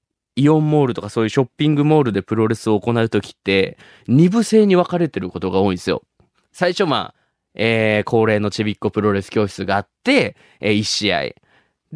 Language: Japanese